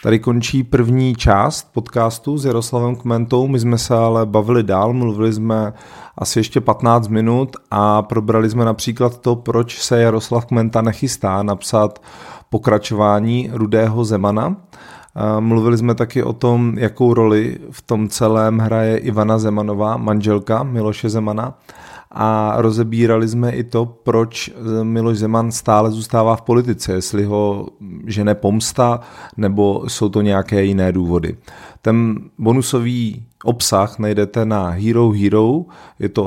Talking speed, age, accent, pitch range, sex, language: 135 wpm, 30-49, native, 100-120 Hz, male, Czech